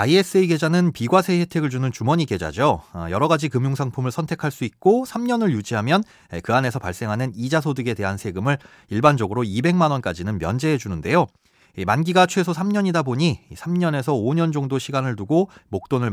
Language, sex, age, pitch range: Korean, male, 30-49, 115-175 Hz